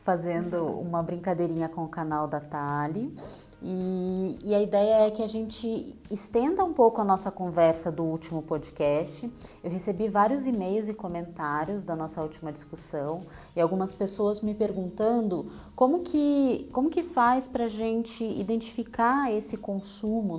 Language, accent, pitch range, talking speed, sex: Portuguese, Brazilian, 165-215 Hz, 145 wpm, female